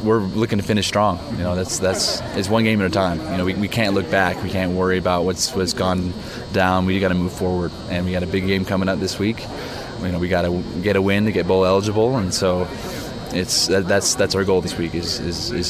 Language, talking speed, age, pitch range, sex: English, 260 wpm, 20-39, 90-100 Hz, male